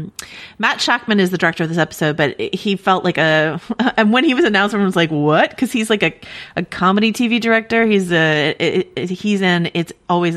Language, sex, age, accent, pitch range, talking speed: English, female, 30-49, American, 155-200 Hz, 220 wpm